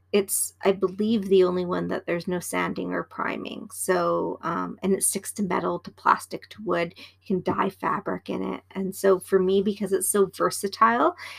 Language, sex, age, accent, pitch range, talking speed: English, female, 30-49, American, 180-215 Hz, 195 wpm